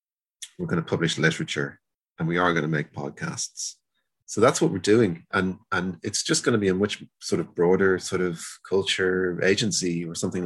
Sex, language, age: male, English, 30-49